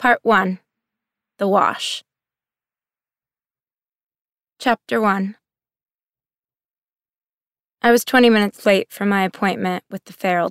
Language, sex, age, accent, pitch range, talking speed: English, female, 20-39, American, 180-205 Hz, 95 wpm